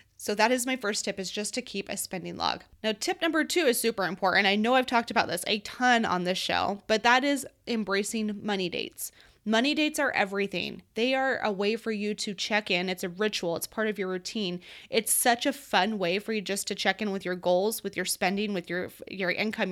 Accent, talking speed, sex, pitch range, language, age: American, 240 wpm, female, 185-230 Hz, English, 20-39